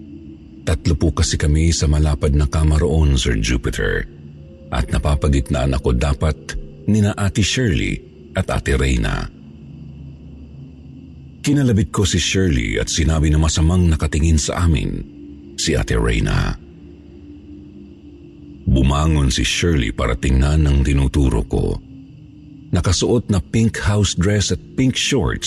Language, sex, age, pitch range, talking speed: Filipino, male, 50-69, 70-95 Hz, 120 wpm